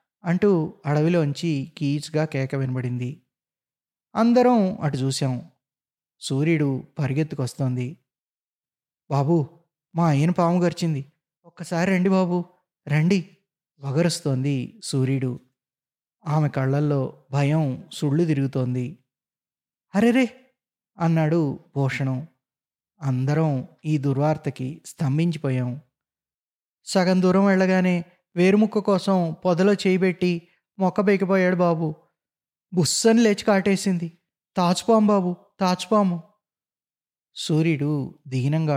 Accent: native